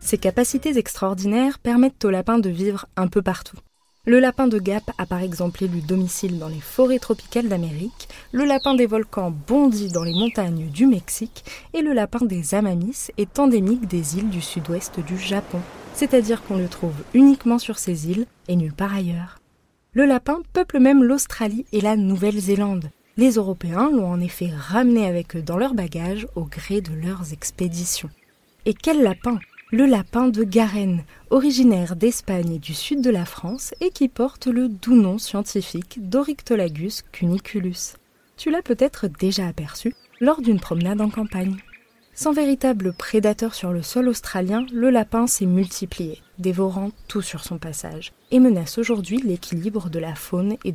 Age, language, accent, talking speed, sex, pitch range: 20-39, French, French, 170 wpm, female, 180-240 Hz